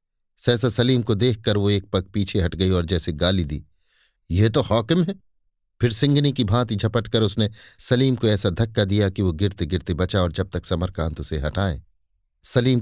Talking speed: 195 wpm